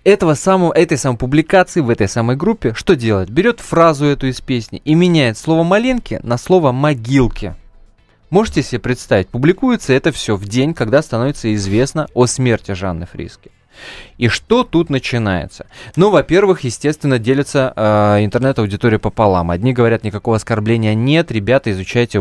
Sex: male